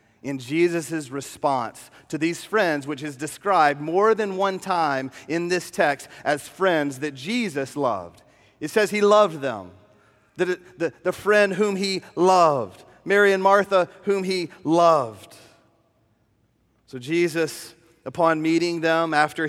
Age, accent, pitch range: 40-59, American, 155-195 Hz